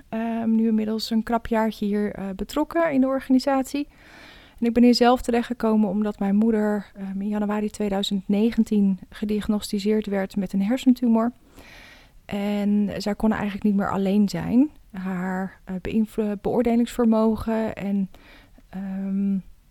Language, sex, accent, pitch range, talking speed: Dutch, female, Dutch, 195-225 Hz, 130 wpm